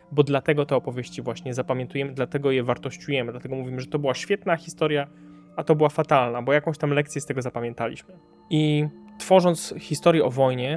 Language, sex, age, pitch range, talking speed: Polish, male, 20-39, 135-160 Hz, 180 wpm